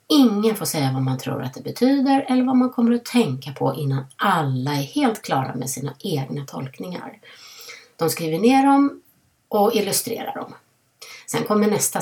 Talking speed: 175 wpm